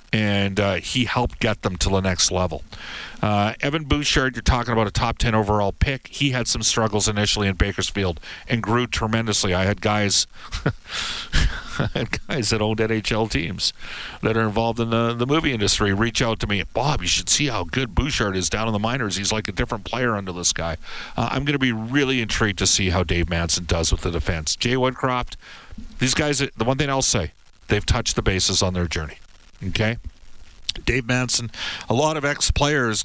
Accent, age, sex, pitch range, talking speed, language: American, 50-69, male, 100-125 Hz, 205 wpm, English